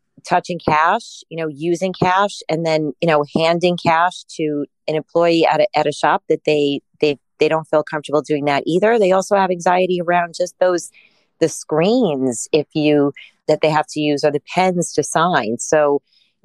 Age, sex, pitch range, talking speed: 30-49, female, 140-170 Hz, 195 wpm